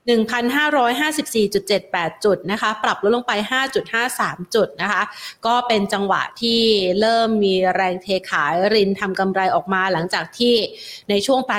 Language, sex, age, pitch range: Thai, female, 30-49, 195-245 Hz